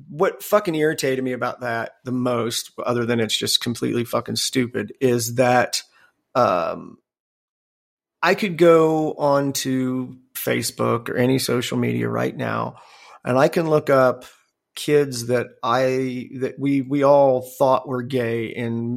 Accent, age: American, 40-59